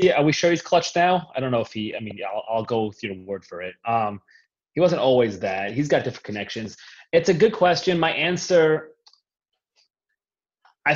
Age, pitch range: 20-39, 95-115 Hz